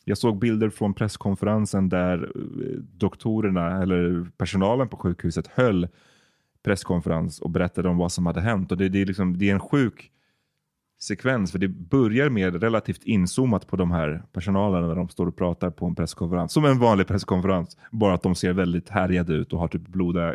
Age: 30-49